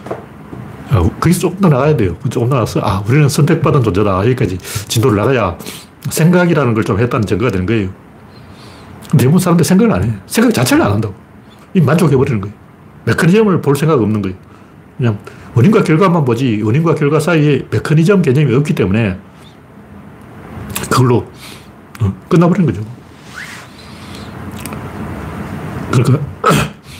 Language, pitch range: Korean, 110-165 Hz